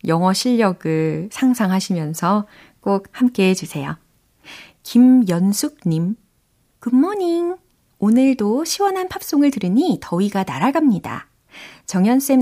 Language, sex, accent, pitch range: Korean, female, native, 170-255 Hz